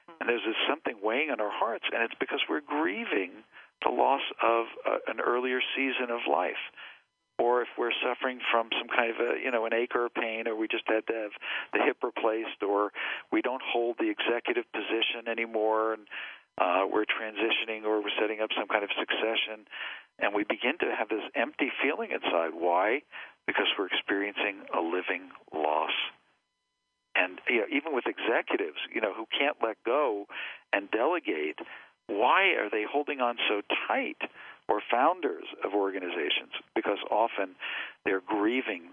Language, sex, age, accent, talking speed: English, male, 50-69, American, 165 wpm